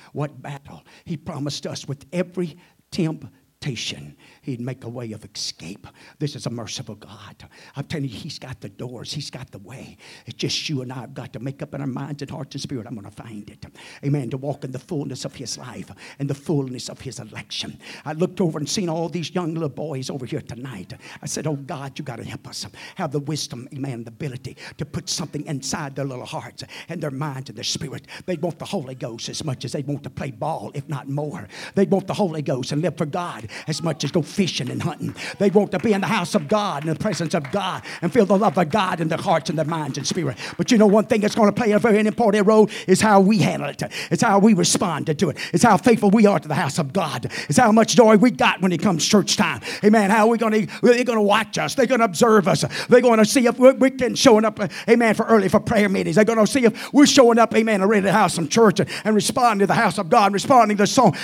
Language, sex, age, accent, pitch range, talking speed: English, male, 50-69, American, 140-210 Hz, 265 wpm